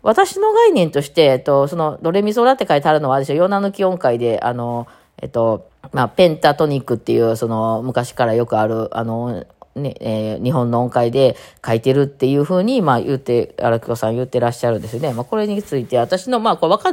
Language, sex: Japanese, female